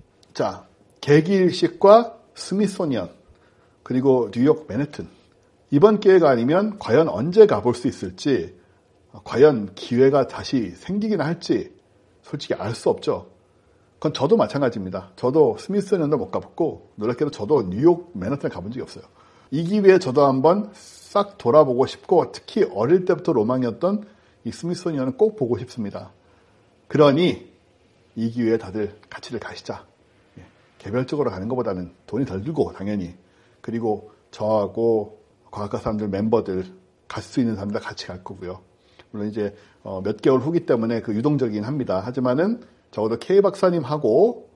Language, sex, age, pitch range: Korean, male, 60-79, 105-165 Hz